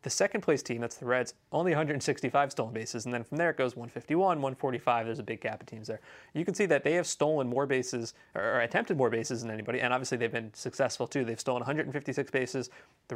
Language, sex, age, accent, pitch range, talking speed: English, male, 30-49, American, 115-140 Hz, 240 wpm